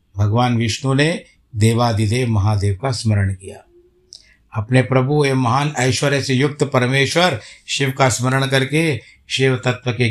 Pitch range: 110-135 Hz